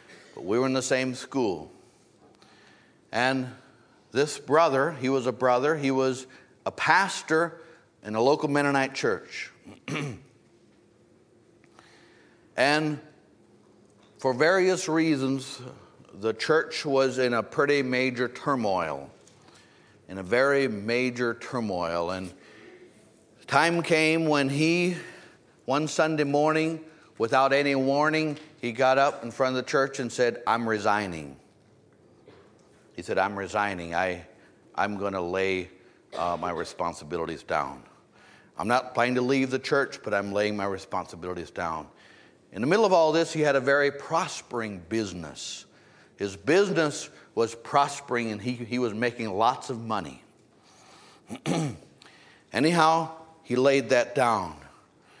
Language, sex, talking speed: English, male, 125 wpm